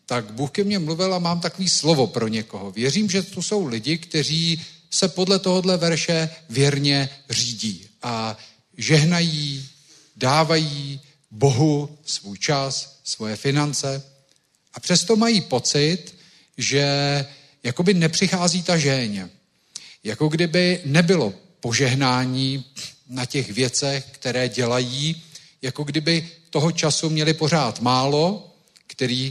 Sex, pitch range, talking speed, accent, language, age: male, 125-165 Hz, 115 wpm, native, Czech, 40-59